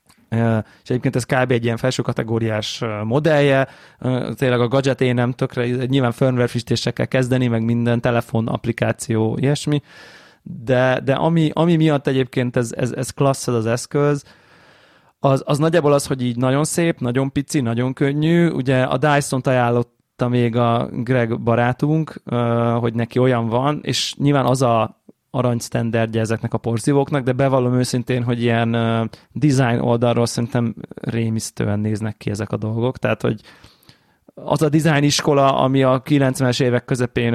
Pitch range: 120-135 Hz